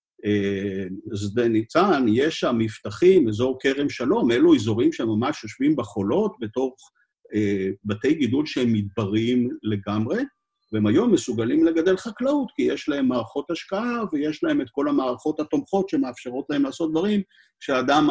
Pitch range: 120-190 Hz